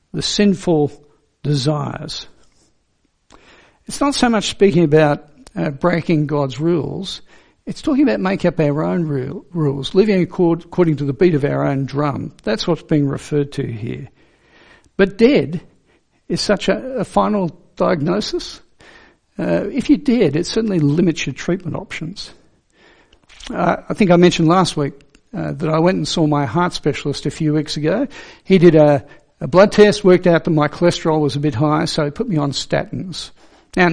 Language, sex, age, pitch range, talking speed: English, male, 60-79, 150-200 Hz, 175 wpm